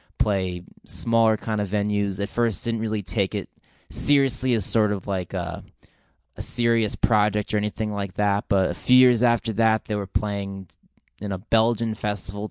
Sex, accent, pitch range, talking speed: male, American, 100-115 Hz, 175 wpm